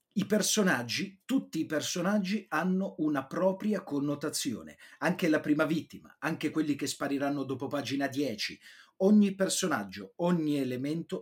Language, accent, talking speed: Italian, native, 130 wpm